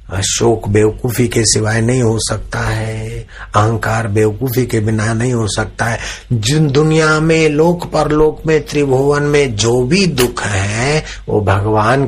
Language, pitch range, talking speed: Hindi, 110-135 Hz, 150 wpm